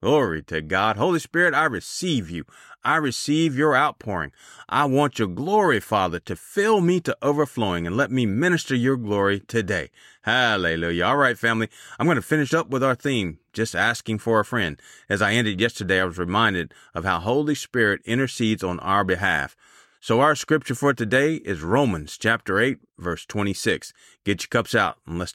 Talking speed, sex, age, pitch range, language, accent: 185 wpm, male, 30-49, 95-140 Hz, English, American